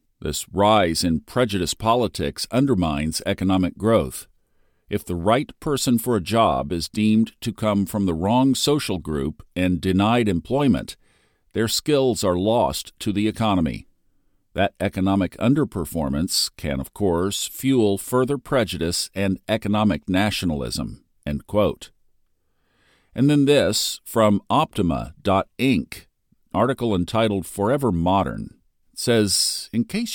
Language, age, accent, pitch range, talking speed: English, 50-69, American, 95-125 Hz, 120 wpm